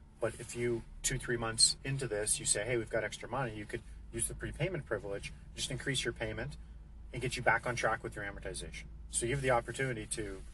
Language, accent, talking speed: English, American, 230 wpm